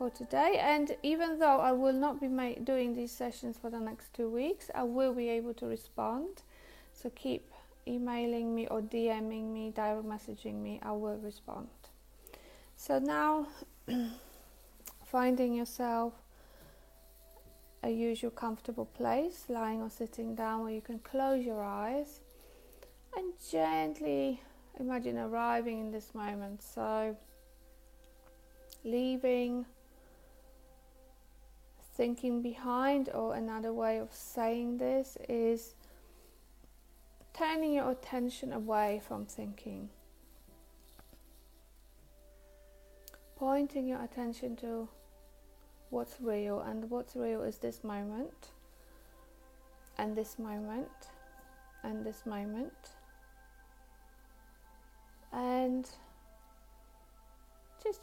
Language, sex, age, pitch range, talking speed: English, female, 30-49, 220-265 Hz, 100 wpm